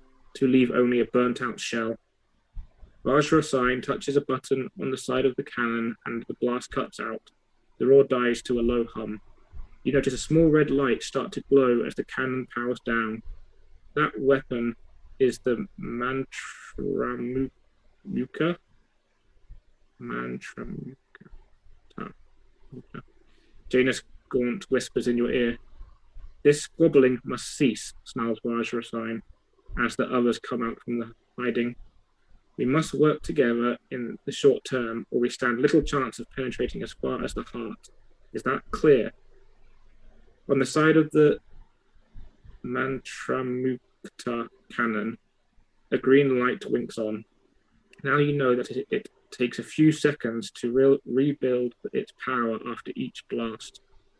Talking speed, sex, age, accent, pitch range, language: 135 wpm, male, 20-39, British, 115-135 Hz, English